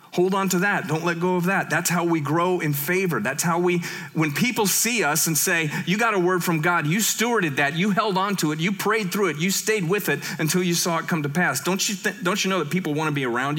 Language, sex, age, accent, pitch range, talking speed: English, male, 40-59, American, 155-190 Hz, 285 wpm